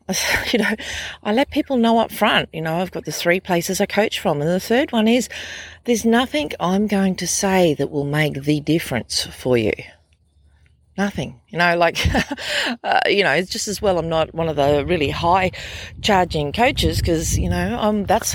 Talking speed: 200 wpm